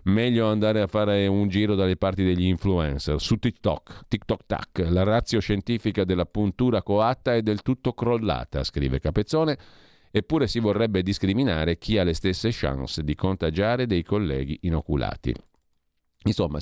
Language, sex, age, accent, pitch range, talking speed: Italian, male, 40-59, native, 80-105 Hz, 150 wpm